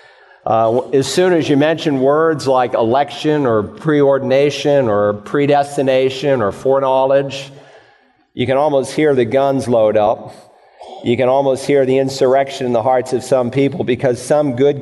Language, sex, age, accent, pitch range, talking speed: English, male, 40-59, American, 125-145 Hz, 155 wpm